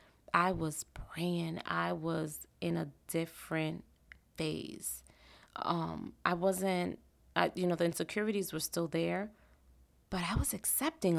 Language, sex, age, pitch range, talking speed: English, female, 20-39, 155-180 Hz, 130 wpm